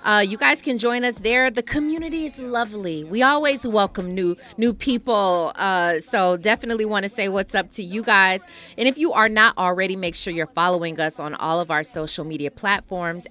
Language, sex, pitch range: English, female, 170-235 Hz